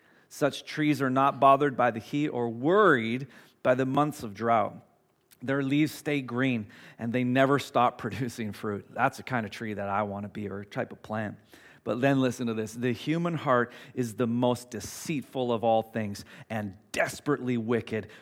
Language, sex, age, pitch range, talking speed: English, male, 40-59, 115-145 Hz, 190 wpm